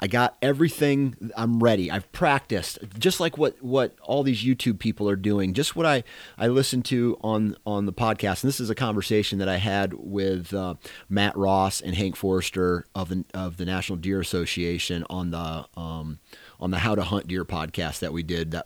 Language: English